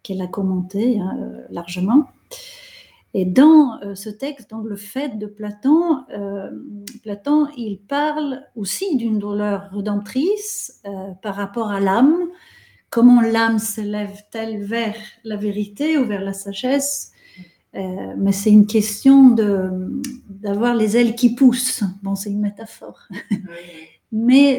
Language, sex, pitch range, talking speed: French, female, 205-265 Hz, 130 wpm